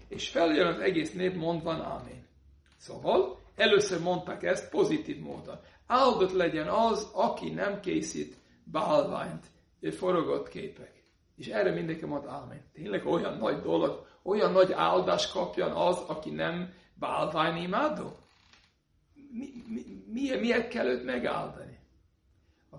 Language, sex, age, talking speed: Hungarian, male, 60-79, 125 wpm